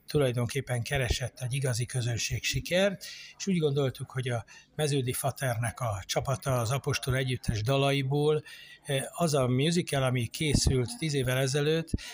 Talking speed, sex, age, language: 135 wpm, male, 60-79, Hungarian